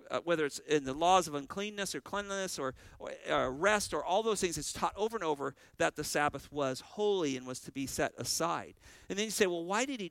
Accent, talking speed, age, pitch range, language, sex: American, 250 wpm, 50-69, 130-200 Hz, English, male